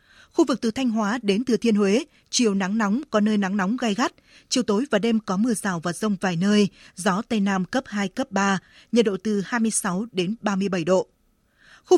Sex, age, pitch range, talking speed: female, 20-39, 195-235 Hz, 220 wpm